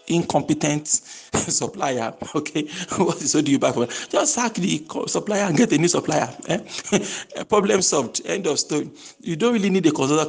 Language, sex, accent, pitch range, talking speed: English, male, Nigerian, 125-170 Hz, 175 wpm